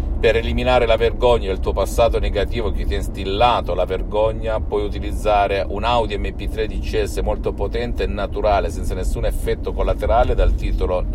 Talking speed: 165 wpm